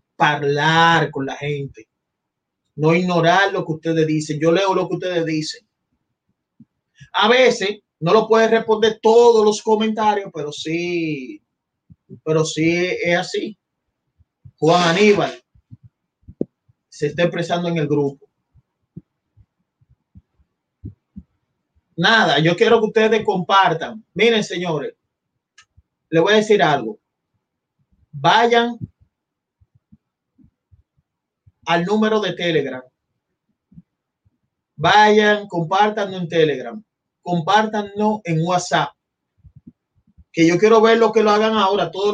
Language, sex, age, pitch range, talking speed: Spanish, male, 30-49, 165-215 Hz, 105 wpm